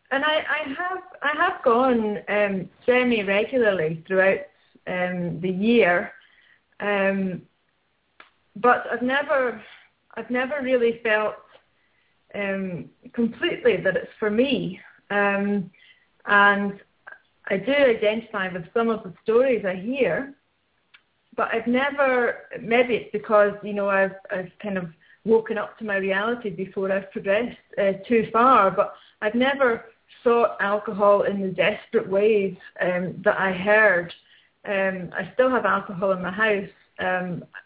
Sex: female